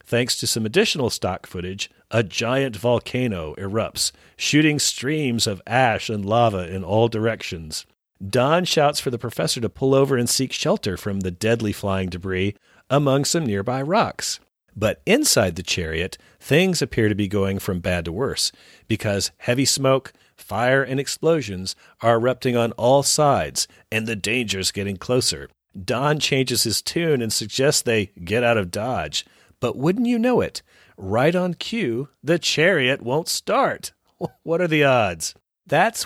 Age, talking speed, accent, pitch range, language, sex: 40-59, 160 wpm, American, 100-145 Hz, English, male